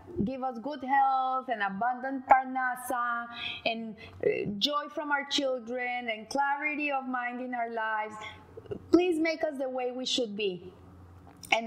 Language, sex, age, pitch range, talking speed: English, female, 20-39, 225-300 Hz, 145 wpm